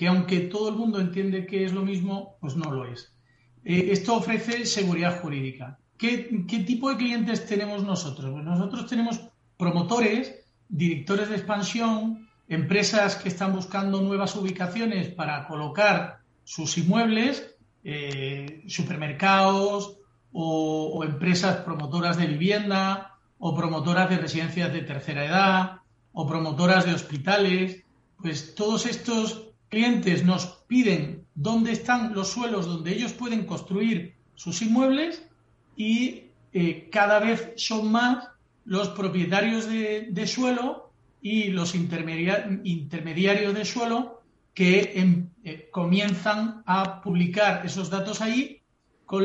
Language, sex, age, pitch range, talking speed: Spanish, male, 40-59, 170-220 Hz, 125 wpm